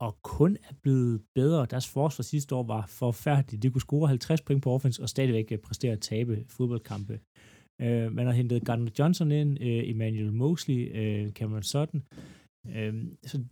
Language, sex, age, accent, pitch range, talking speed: Danish, male, 30-49, native, 110-135 Hz, 155 wpm